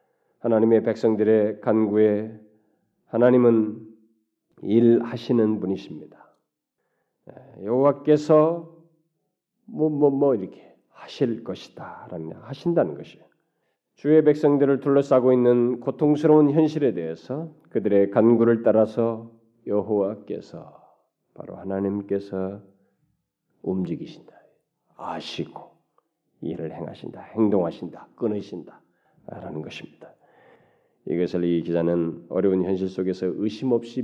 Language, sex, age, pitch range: Korean, male, 40-59, 100-150 Hz